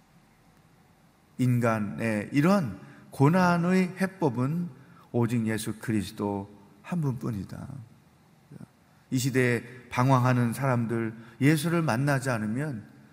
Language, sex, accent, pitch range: Korean, male, native, 125-170 Hz